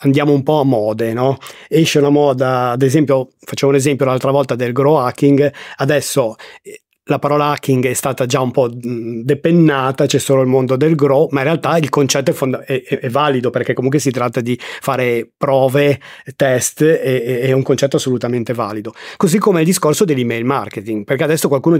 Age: 30-49